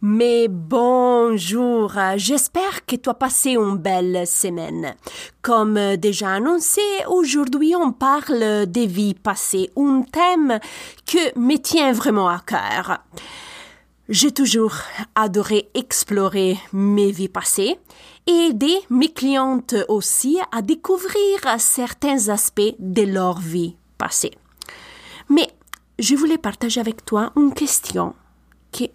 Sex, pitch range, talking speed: female, 205-305 Hz, 115 wpm